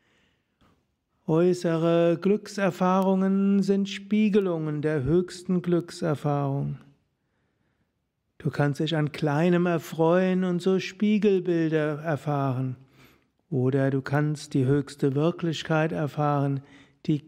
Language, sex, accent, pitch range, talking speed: German, male, German, 145-175 Hz, 85 wpm